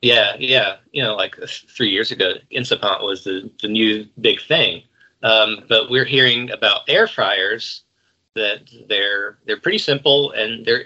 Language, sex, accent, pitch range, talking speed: English, male, American, 105-125 Hz, 165 wpm